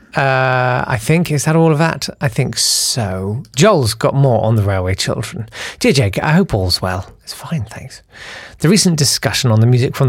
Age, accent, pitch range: 40-59, British, 110-150 Hz